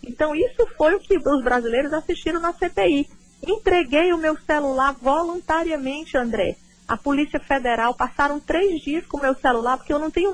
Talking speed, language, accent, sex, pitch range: 175 wpm, Portuguese, Brazilian, female, 220-290 Hz